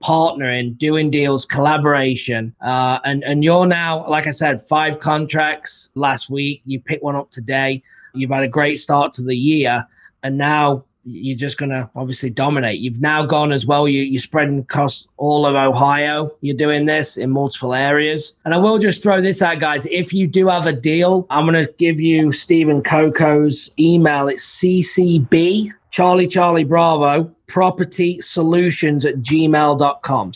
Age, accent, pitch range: 20-39, British, 135-160 Hz